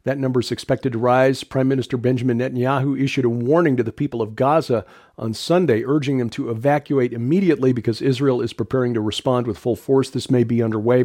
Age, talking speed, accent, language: 50-69, 205 wpm, American, English